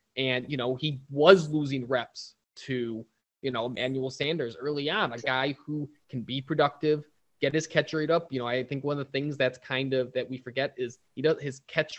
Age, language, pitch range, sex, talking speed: 20-39, English, 130-150 Hz, male, 220 wpm